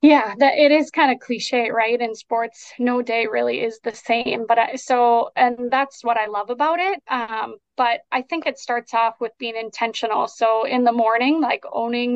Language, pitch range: English, 220-245 Hz